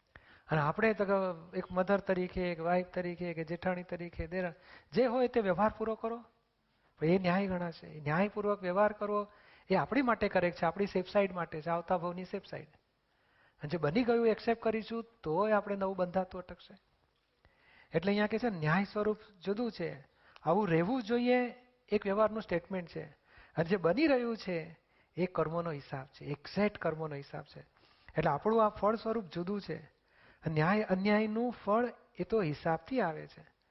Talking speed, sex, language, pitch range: 160 wpm, male, Gujarati, 165-210 Hz